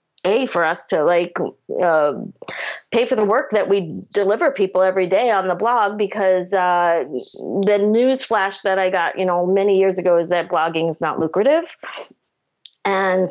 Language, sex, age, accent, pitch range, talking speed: English, female, 30-49, American, 175-205 Hz, 170 wpm